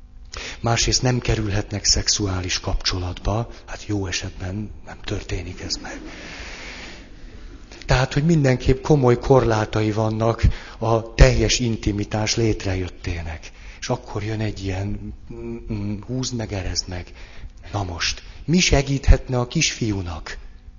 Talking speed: 105 wpm